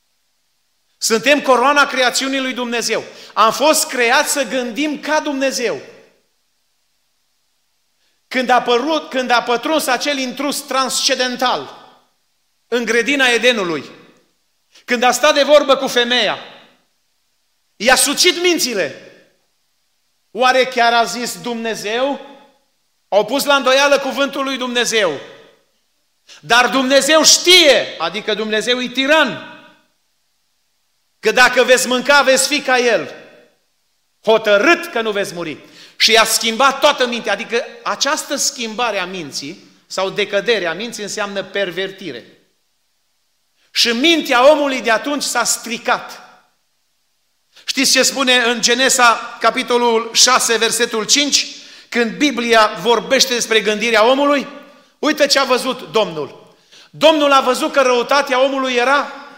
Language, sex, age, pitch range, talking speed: Romanian, male, 40-59, 235-285 Hz, 115 wpm